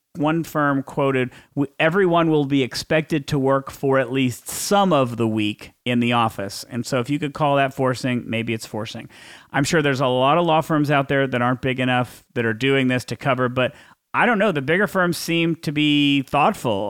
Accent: American